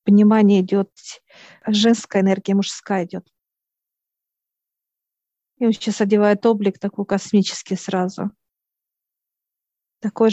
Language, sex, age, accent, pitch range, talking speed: Russian, female, 40-59, native, 195-220 Hz, 85 wpm